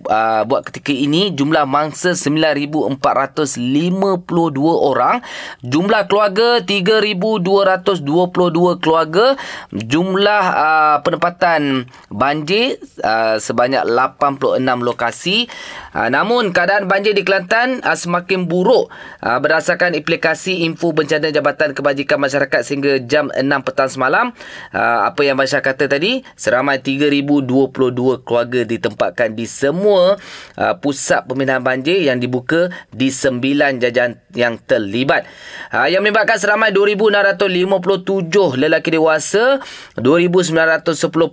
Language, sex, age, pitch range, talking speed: Malay, male, 20-39, 140-195 Hz, 105 wpm